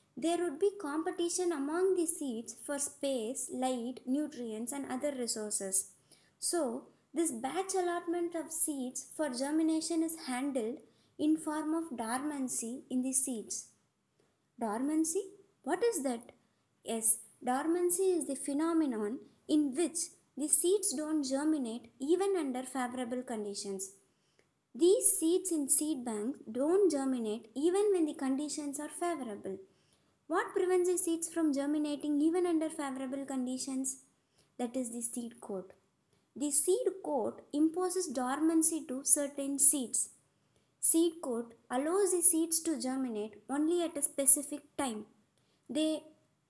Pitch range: 255-325 Hz